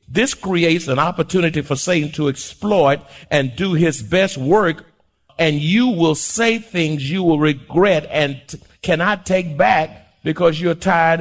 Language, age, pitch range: English, 50-69, 135-170 Hz